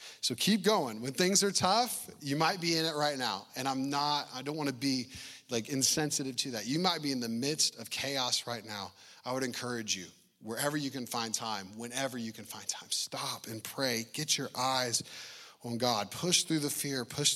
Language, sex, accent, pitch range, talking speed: English, male, American, 130-200 Hz, 220 wpm